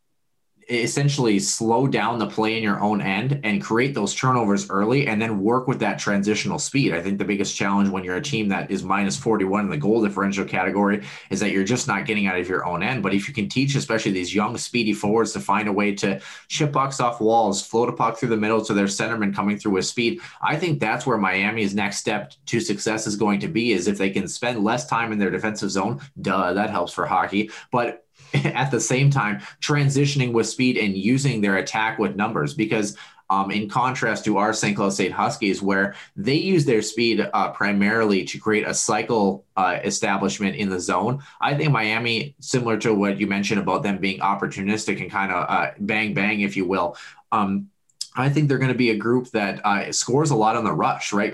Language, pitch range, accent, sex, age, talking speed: English, 100-120 Hz, American, male, 20-39, 220 wpm